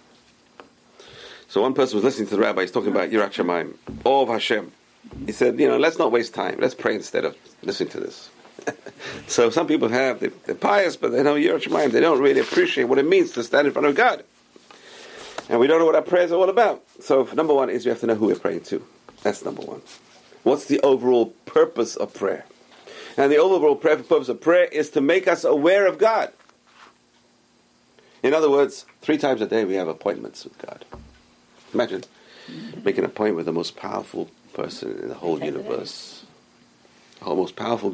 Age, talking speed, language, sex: 50-69, 195 wpm, English, male